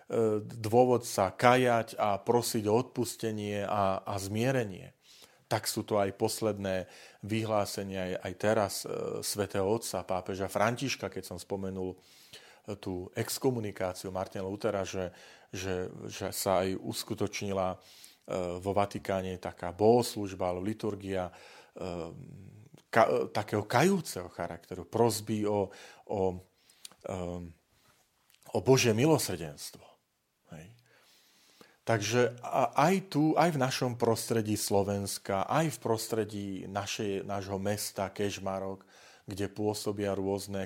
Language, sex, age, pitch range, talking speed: Slovak, male, 40-59, 95-115 Hz, 100 wpm